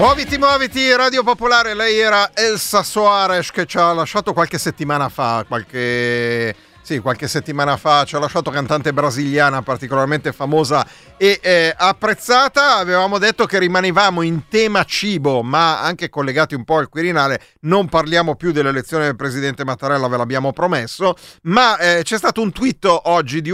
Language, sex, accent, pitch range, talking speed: Italian, male, native, 135-190 Hz, 155 wpm